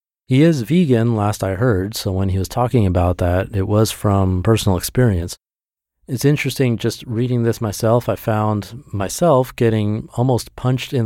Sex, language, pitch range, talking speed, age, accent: male, English, 95-120 Hz, 170 wpm, 30-49, American